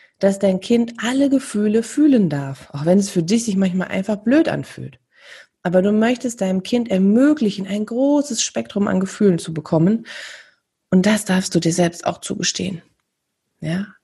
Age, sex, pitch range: 30-49, female, 180-230 Hz